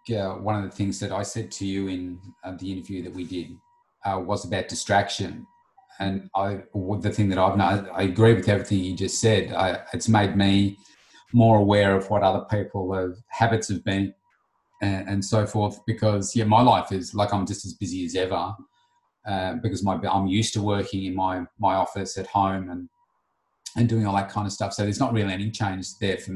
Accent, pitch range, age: Australian, 95-115 Hz, 30-49